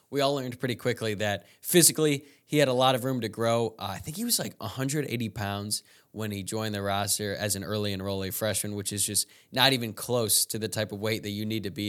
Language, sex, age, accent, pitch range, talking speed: English, male, 20-39, American, 105-130 Hz, 245 wpm